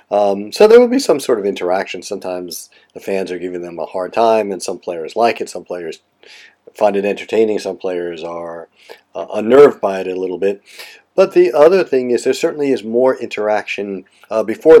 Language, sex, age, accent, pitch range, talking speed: English, male, 40-59, American, 95-115 Hz, 205 wpm